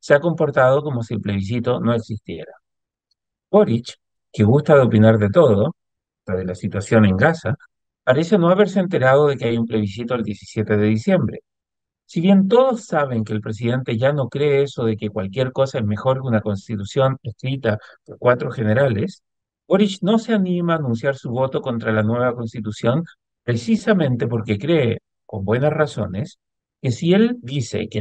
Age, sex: 50-69, male